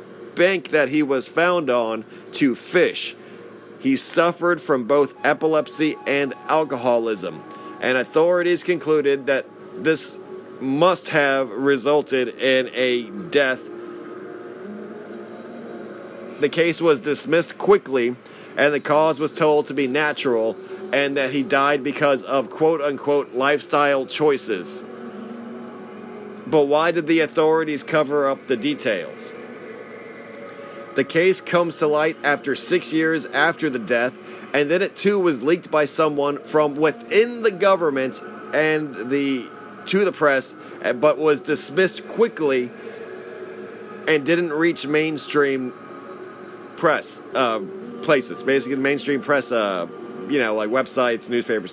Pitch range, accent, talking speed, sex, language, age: 135-170 Hz, American, 125 wpm, male, English, 40-59